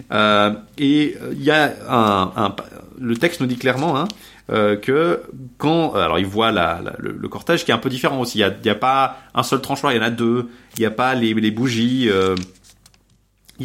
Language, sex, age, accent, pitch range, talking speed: French, male, 30-49, French, 105-135 Hz, 235 wpm